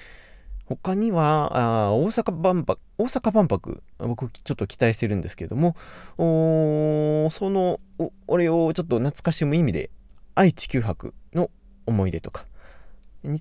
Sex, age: male, 20-39